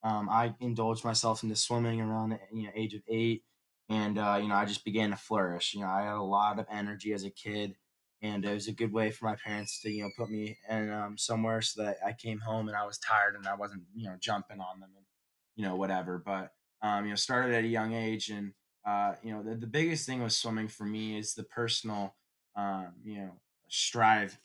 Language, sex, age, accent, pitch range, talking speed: English, male, 20-39, American, 105-115 Hz, 240 wpm